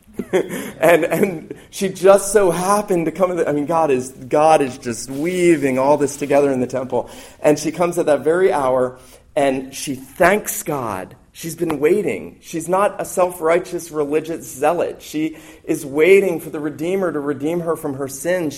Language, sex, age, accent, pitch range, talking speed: English, male, 40-59, American, 120-160 Hz, 180 wpm